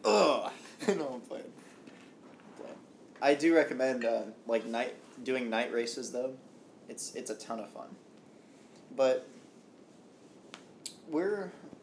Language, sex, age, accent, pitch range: English, male, 20-39, American, 115-140 Hz